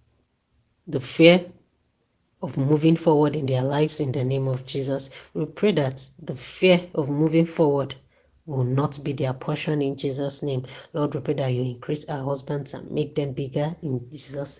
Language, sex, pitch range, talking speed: English, female, 130-155 Hz, 175 wpm